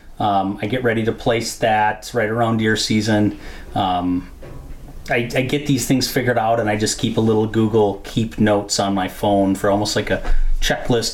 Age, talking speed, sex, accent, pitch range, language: 30-49, 195 wpm, male, American, 95-125 Hz, English